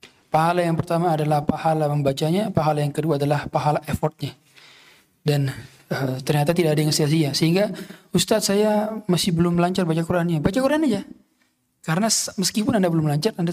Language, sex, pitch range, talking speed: Indonesian, male, 150-180 Hz, 160 wpm